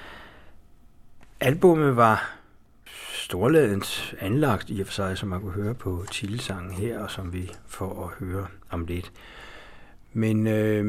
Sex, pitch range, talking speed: male, 90-105 Hz, 140 wpm